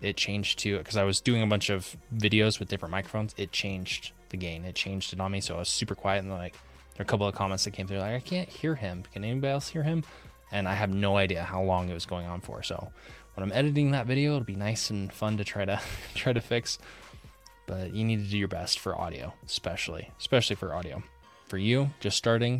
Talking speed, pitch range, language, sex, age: 260 wpm, 95-110 Hz, English, male, 20-39